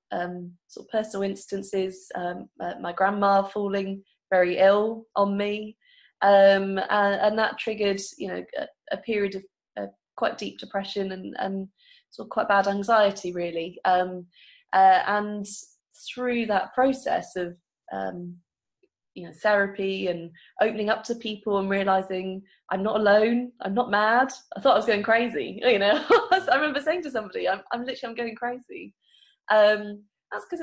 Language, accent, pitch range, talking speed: English, British, 185-230 Hz, 165 wpm